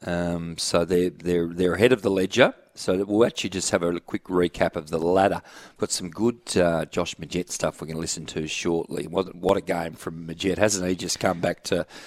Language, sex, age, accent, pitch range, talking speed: English, male, 40-59, Australian, 90-105 Hz, 225 wpm